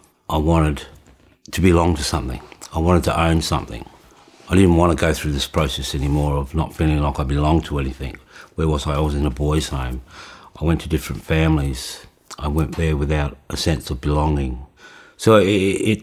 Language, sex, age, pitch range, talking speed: English, male, 60-79, 75-90 Hz, 195 wpm